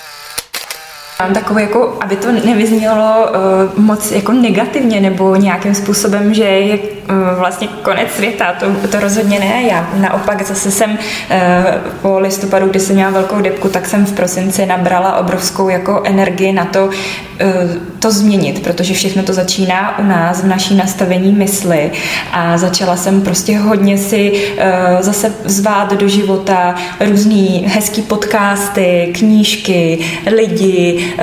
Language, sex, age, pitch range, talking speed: Czech, female, 20-39, 190-210 Hz, 140 wpm